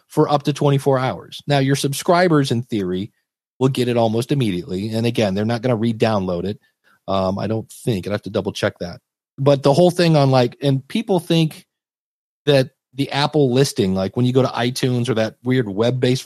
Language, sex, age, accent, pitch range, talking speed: English, male, 40-59, American, 110-140 Hz, 205 wpm